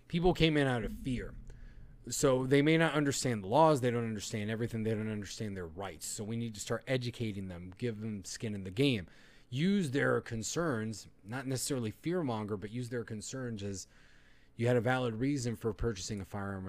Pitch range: 100-130 Hz